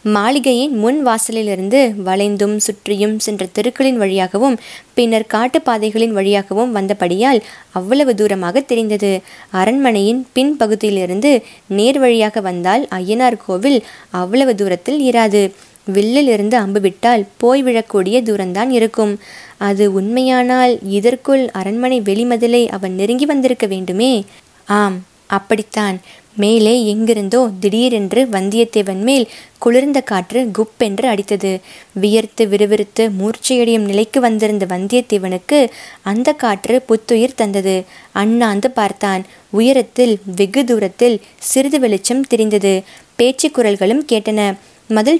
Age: 20-39